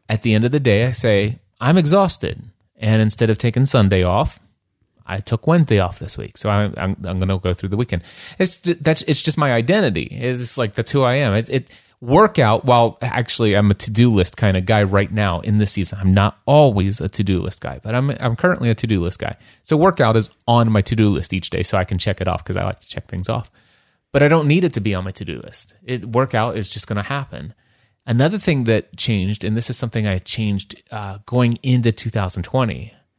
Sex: male